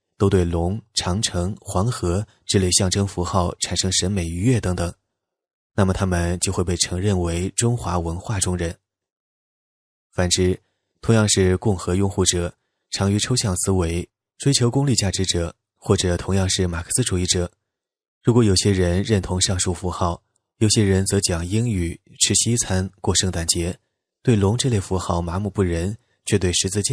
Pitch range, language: 90-100 Hz, English